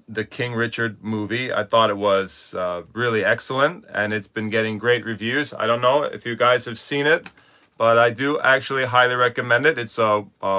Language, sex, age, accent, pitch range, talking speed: English, male, 30-49, American, 100-120 Hz, 205 wpm